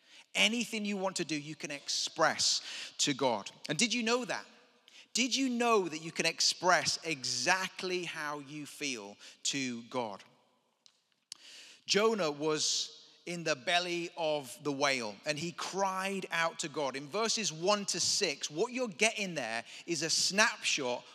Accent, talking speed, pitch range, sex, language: British, 155 wpm, 140-195 Hz, male, English